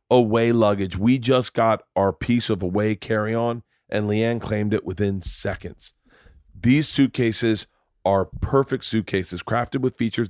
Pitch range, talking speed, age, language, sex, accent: 110-150 Hz, 140 wpm, 40-59, English, male, American